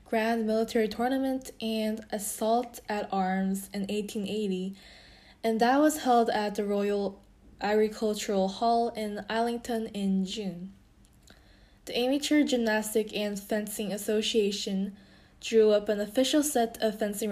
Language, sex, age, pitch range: Korean, female, 10-29, 200-230 Hz